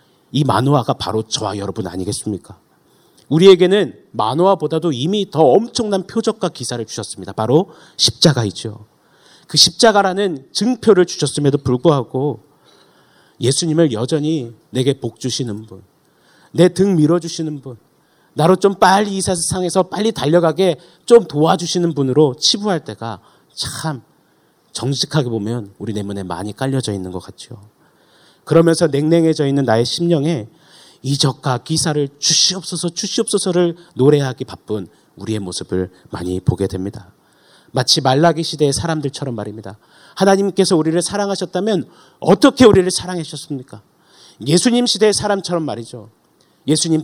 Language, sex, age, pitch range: Korean, male, 40-59, 115-175 Hz